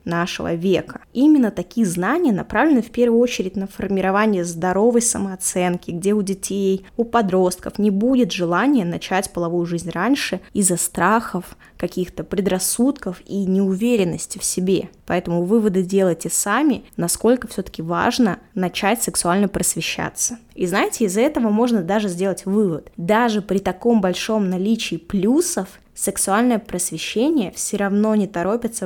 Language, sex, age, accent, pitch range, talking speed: Russian, female, 20-39, native, 180-230 Hz, 130 wpm